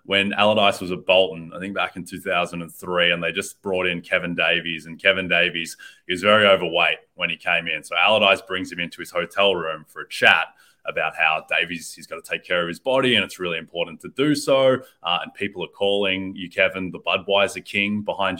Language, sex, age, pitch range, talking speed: English, male, 20-39, 85-110 Hz, 220 wpm